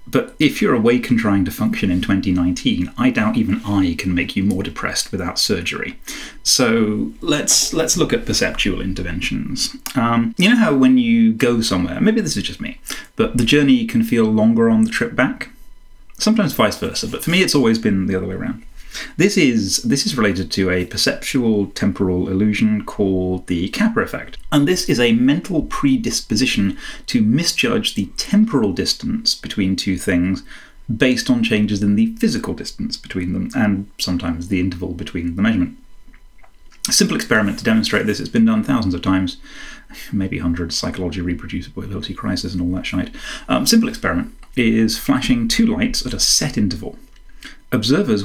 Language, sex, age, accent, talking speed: English, male, 30-49, British, 175 wpm